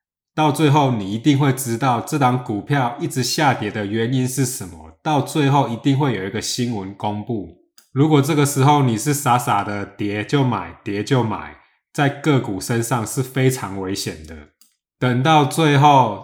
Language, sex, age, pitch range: Chinese, male, 20-39, 105-135 Hz